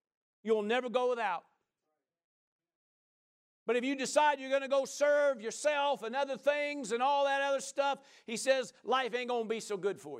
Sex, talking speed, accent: male, 190 wpm, American